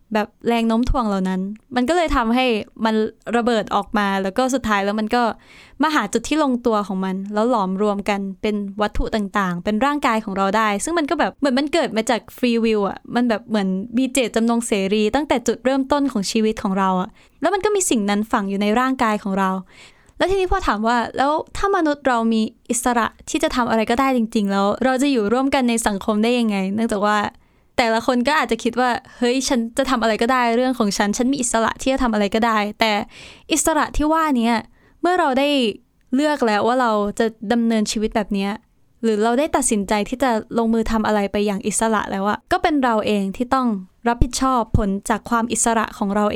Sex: female